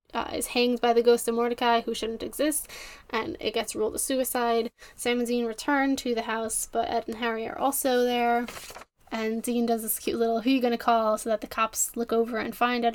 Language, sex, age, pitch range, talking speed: English, female, 10-29, 230-255 Hz, 230 wpm